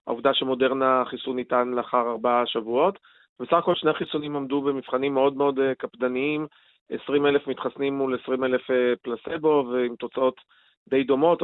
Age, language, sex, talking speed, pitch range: 40-59, Hebrew, male, 130 wpm, 130-155 Hz